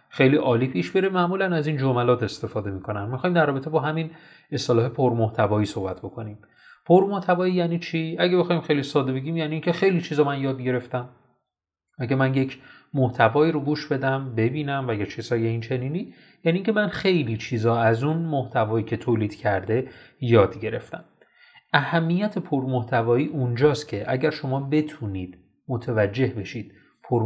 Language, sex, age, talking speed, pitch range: Persian, male, 30-49, 155 wpm, 110-155 Hz